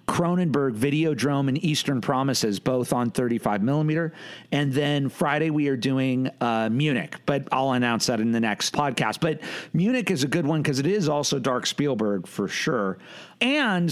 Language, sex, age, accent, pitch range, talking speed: English, male, 40-59, American, 135-170 Hz, 175 wpm